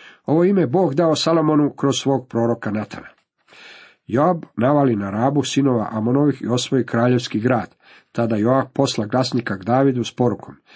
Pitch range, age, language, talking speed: 115-140 Hz, 50-69, Croatian, 150 wpm